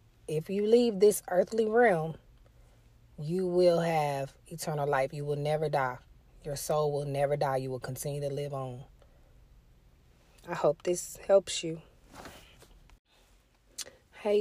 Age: 30-49